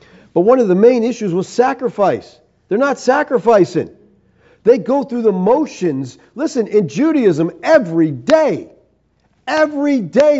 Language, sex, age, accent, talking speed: English, male, 40-59, American, 135 wpm